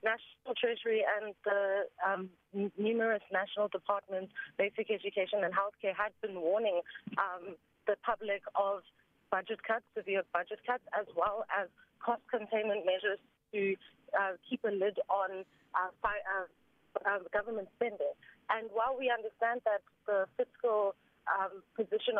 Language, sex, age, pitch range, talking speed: English, female, 30-49, 200-245 Hz, 140 wpm